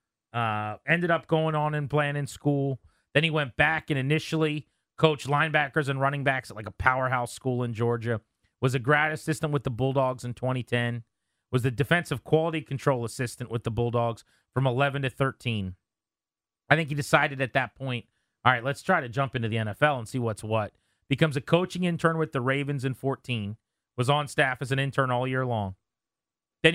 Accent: American